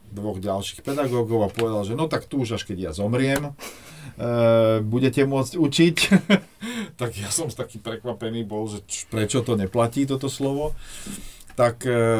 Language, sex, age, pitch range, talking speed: Slovak, male, 40-59, 105-135 Hz, 155 wpm